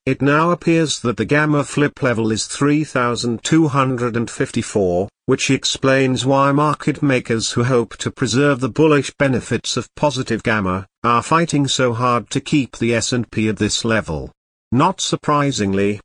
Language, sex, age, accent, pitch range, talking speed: English, male, 50-69, British, 110-145 Hz, 140 wpm